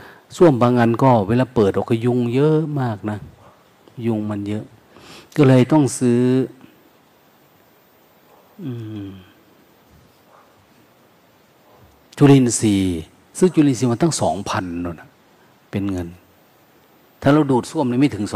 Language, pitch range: Thai, 95-120 Hz